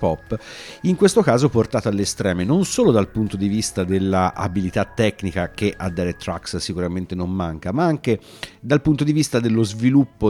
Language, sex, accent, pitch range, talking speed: Italian, male, native, 95-120 Hz, 175 wpm